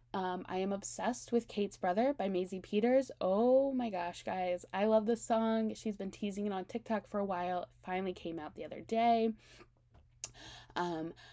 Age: 10-29